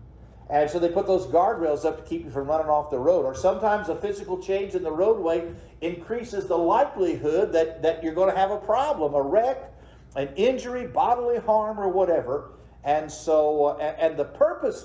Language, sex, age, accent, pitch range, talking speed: English, male, 50-69, American, 130-190 Hz, 200 wpm